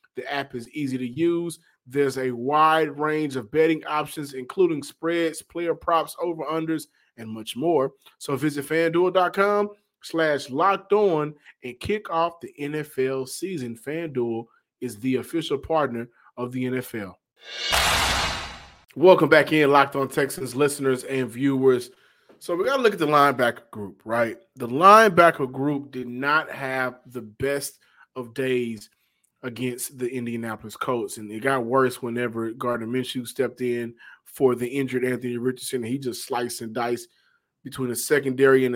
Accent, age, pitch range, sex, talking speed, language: American, 30-49, 125-155 Hz, male, 150 wpm, English